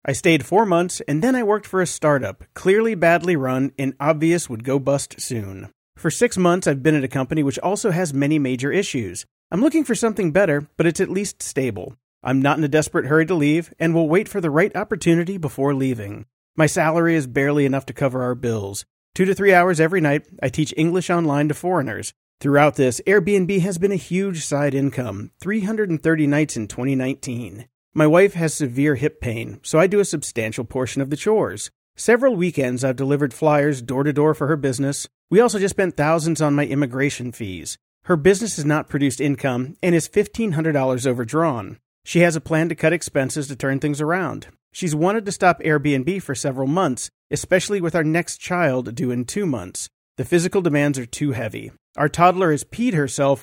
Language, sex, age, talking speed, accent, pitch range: English, male, 40-59, 200 wpm, American, 135-175 Hz